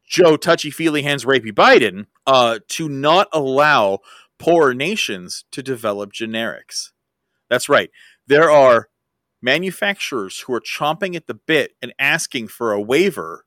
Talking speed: 135 wpm